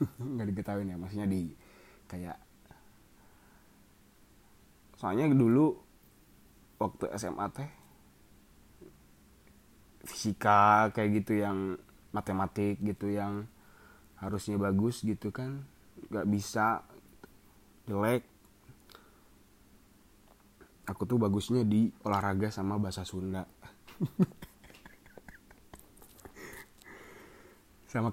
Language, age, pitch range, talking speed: Indonesian, 20-39, 95-110 Hz, 75 wpm